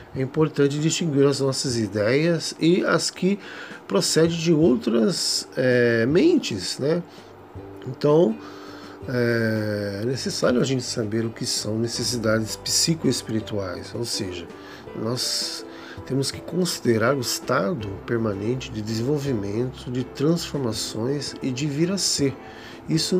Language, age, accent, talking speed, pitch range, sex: Portuguese, 40-59, Brazilian, 115 wpm, 115-145 Hz, male